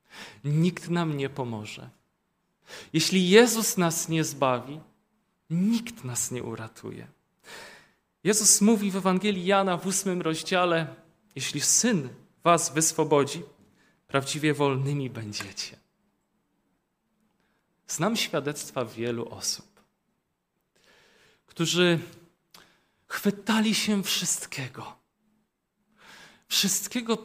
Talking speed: 80 wpm